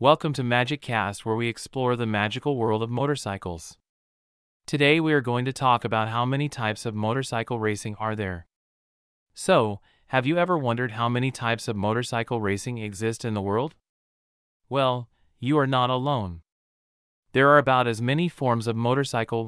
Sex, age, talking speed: male, 30-49, 170 wpm